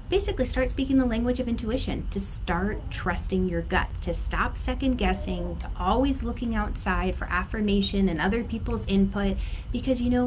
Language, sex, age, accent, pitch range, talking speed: English, female, 30-49, American, 185-245 Hz, 170 wpm